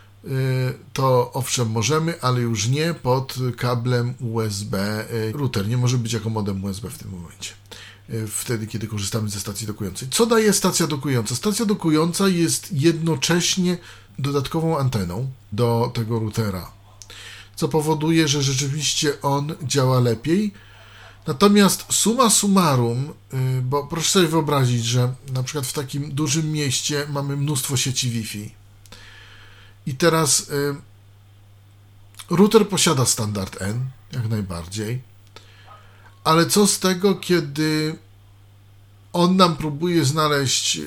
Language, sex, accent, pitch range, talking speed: Polish, male, native, 105-155 Hz, 115 wpm